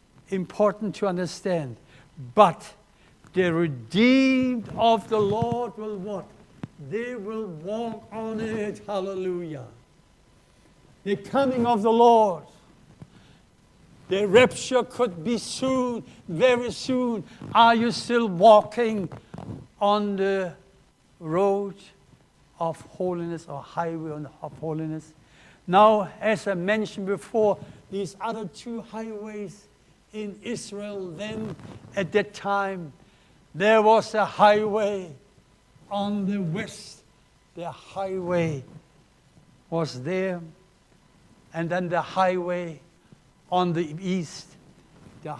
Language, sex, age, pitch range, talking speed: English, male, 60-79, 165-210 Hz, 100 wpm